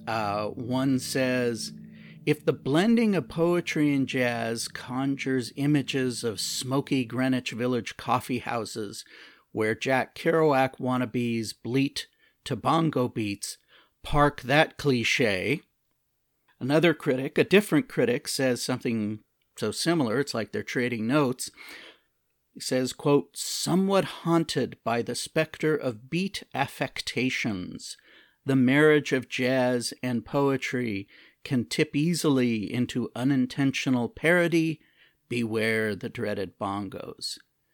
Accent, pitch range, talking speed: American, 120-150 Hz, 110 wpm